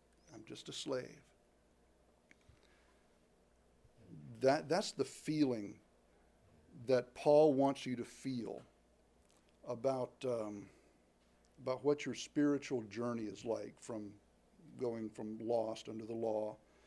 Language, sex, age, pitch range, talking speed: English, male, 60-79, 110-140 Hz, 105 wpm